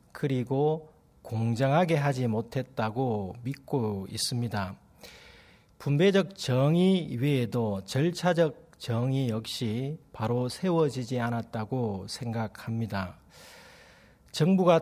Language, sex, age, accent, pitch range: Korean, male, 40-59, native, 115-165 Hz